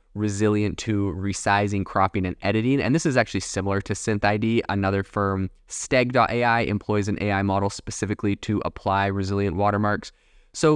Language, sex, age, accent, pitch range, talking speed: English, male, 20-39, American, 100-115 Hz, 145 wpm